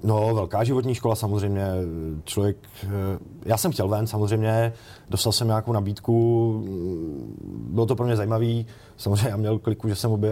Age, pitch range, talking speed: 30-49, 105-120 Hz, 155 wpm